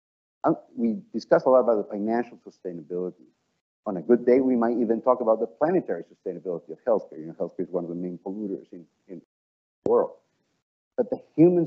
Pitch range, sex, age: 100-125 Hz, male, 50-69